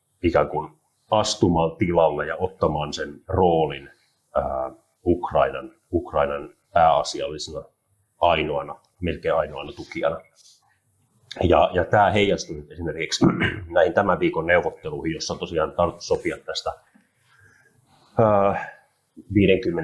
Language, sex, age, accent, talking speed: English, male, 30-49, Finnish, 100 wpm